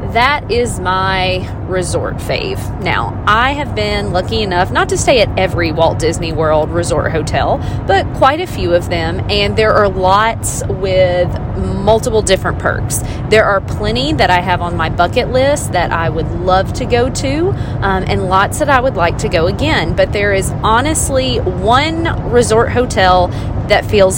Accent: American